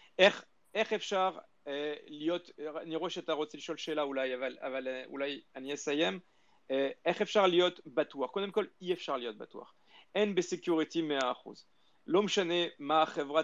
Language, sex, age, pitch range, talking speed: Hebrew, male, 40-59, 145-175 Hz, 150 wpm